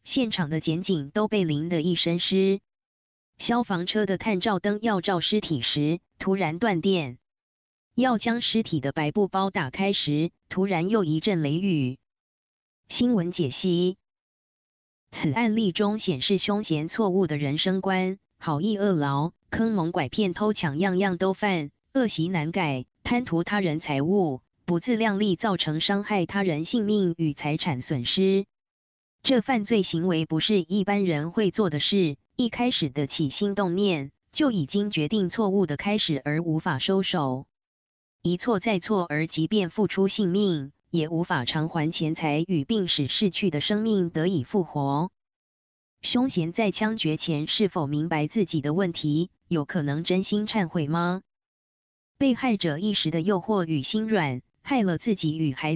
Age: 20-39